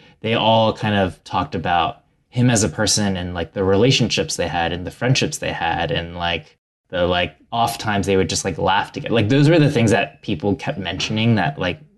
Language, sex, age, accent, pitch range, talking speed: English, male, 20-39, American, 90-120 Hz, 220 wpm